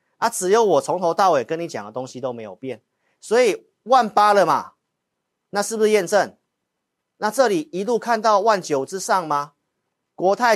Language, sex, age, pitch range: Chinese, male, 40-59, 125-195 Hz